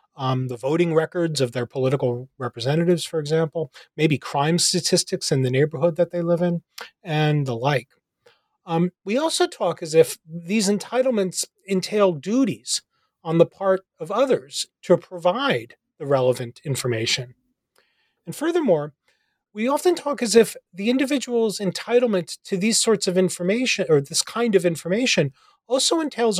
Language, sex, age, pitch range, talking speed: English, male, 30-49, 150-225 Hz, 150 wpm